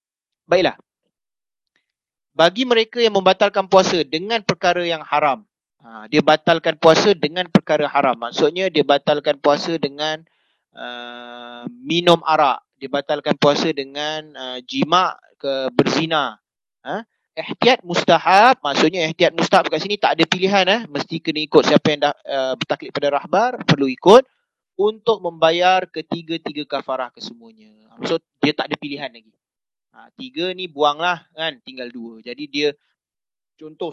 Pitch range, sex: 140-195 Hz, male